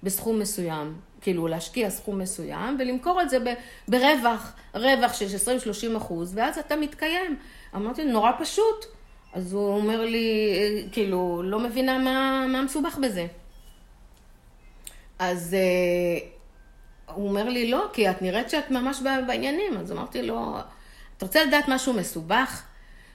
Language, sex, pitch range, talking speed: Hebrew, female, 175-255 Hz, 135 wpm